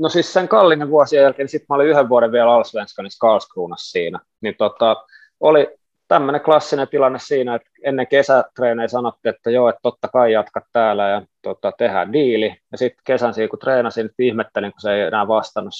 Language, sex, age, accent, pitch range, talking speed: Finnish, male, 20-39, native, 115-155 Hz, 190 wpm